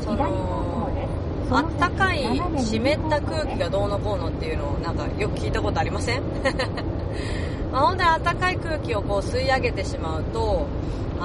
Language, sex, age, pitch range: Japanese, female, 30-49, 90-105 Hz